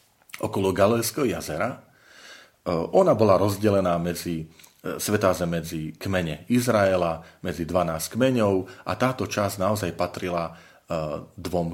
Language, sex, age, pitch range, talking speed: Slovak, male, 40-59, 85-100 Hz, 95 wpm